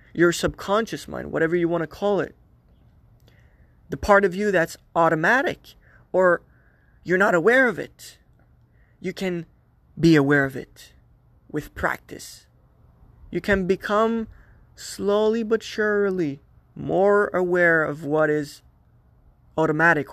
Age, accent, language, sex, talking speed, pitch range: 20-39, American, English, male, 120 wpm, 140-195 Hz